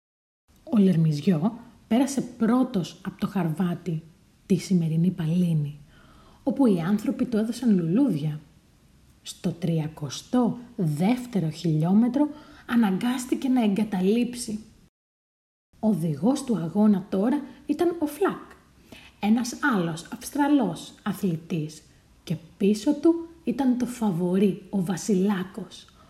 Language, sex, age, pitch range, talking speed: Greek, female, 30-49, 180-245 Hz, 95 wpm